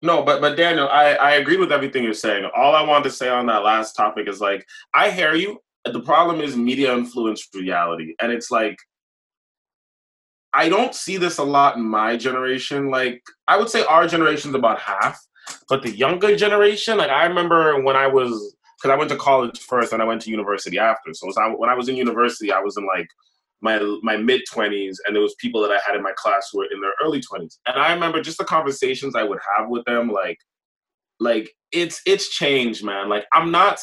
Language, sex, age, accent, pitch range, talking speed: English, male, 20-39, American, 115-170 Hz, 220 wpm